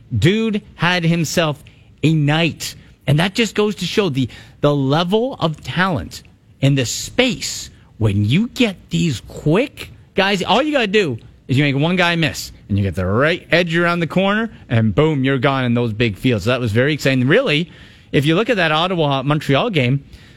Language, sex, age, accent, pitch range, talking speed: English, male, 30-49, American, 125-185 Hz, 195 wpm